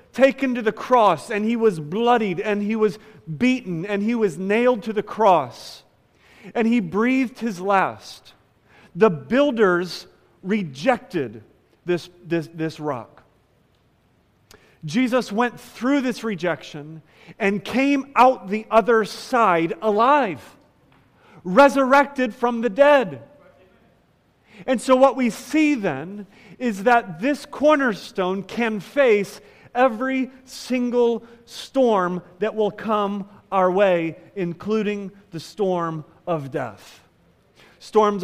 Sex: male